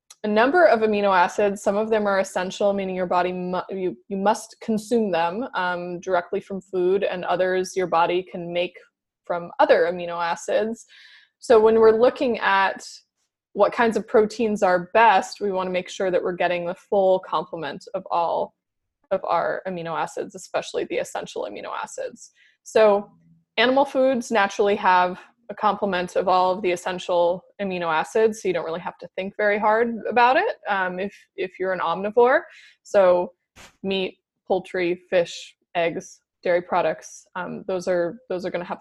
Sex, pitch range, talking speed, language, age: female, 180-220 Hz, 175 wpm, English, 20-39